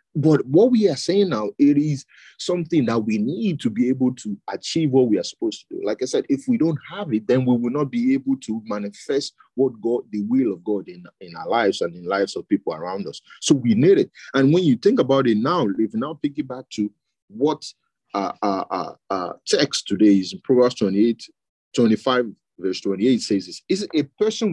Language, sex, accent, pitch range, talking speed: English, male, Nigerian, 120-190 Hz, 225 wpm